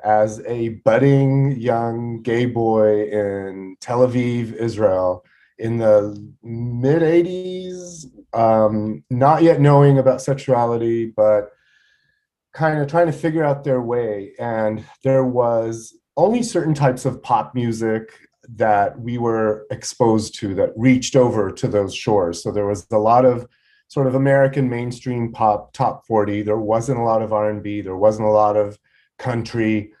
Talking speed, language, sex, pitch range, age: 150 wpm, English, male, 110-130 Hz, 30-49